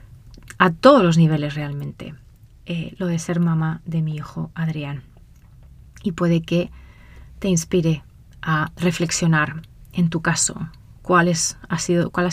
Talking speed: 130 wpm